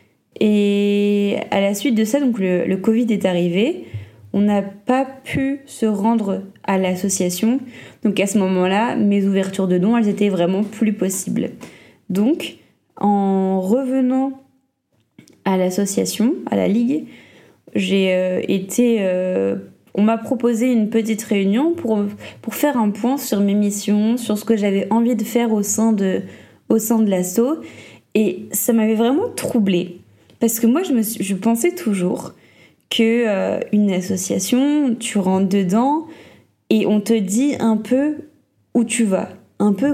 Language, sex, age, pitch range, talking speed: French, female, 20-39, 195-235 Hz, 155 wpm